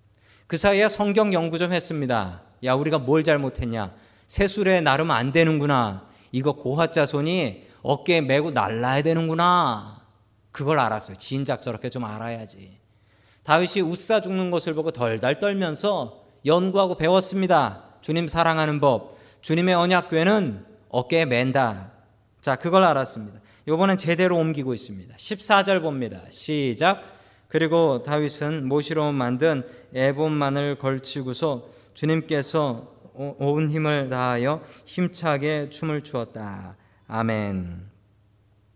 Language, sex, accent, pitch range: Korean, male, native, 110-165 Hz